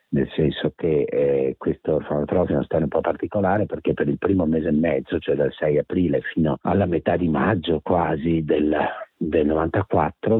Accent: native